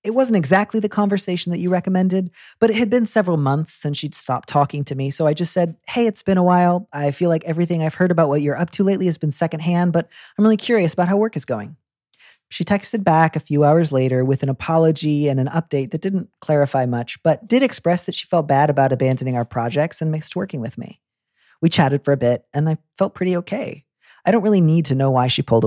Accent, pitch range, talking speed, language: American, 130-175 Hz, 245 wpm, English